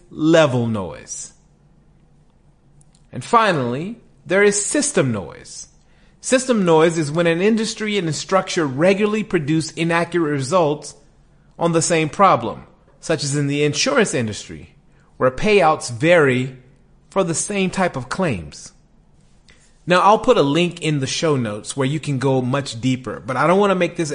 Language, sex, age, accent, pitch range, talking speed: English, male, 30-49, American, 130-180 Hz, 155 wpm